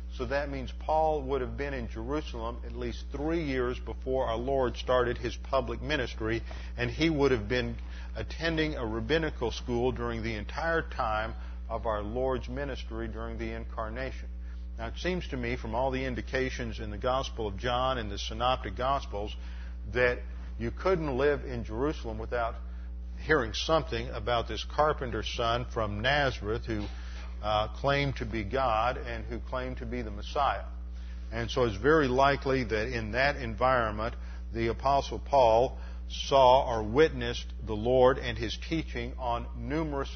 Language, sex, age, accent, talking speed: English, male, 50-69, American, 160 wpm